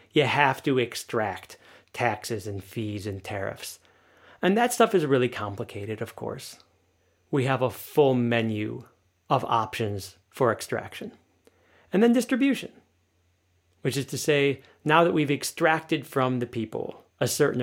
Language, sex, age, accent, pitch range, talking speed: English, male, 30-49, American, 100-135 Hz, 145 wpm